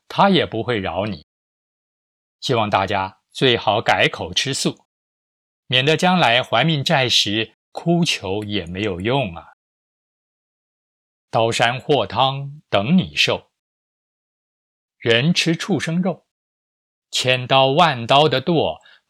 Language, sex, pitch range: Chinese, male, 105-160 Hz